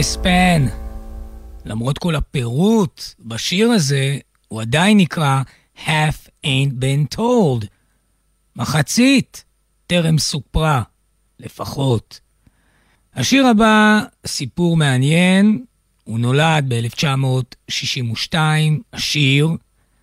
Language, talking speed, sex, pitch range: Hebrew, 75 wpm, male, 125-190 Hz